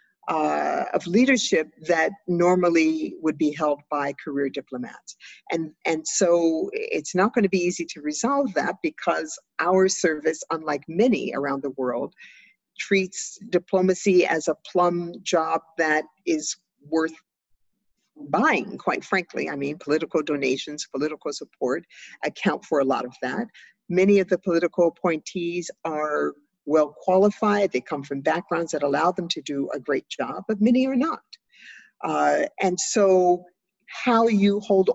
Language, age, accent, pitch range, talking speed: English, 50-69, American, 155-195 Hz, 145 wpm